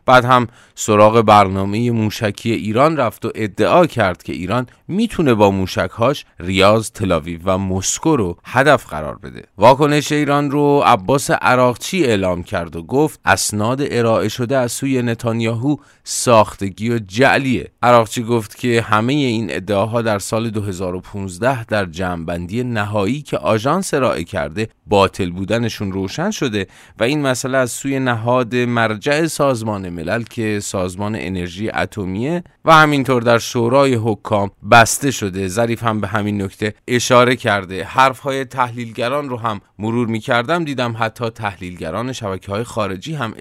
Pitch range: 100-130 Hz